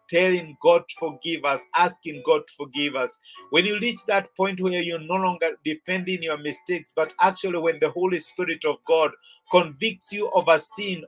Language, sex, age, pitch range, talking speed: English, male, 50-69, 160-205 Hz, 190 wpm